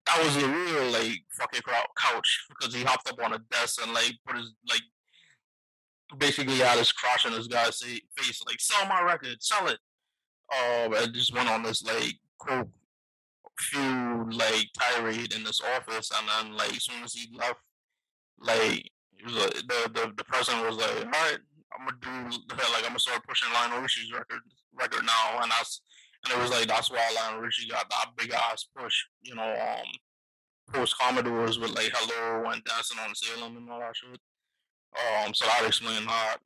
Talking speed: 190 wpm